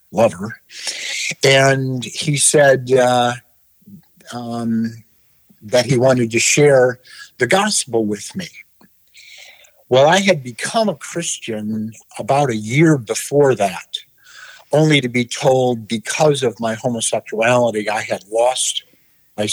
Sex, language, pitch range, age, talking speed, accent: male, English, 110-150 Hz, 50-69, 115 wpm, American